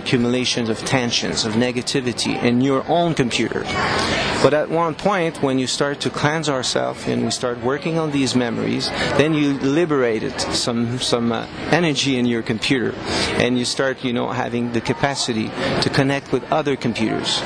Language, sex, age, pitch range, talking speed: English, male, 40-59, 120-140 Hz, 170 wpm